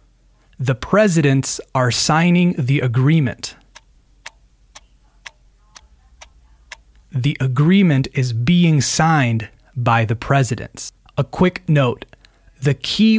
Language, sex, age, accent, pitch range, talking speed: Spanish, male, 20-39, American, 120-150 Hz, 85 wpm